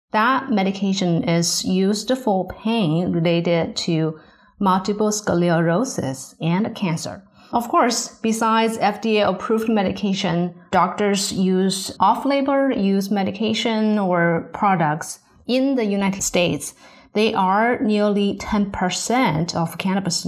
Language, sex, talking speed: English, female, 105 wpm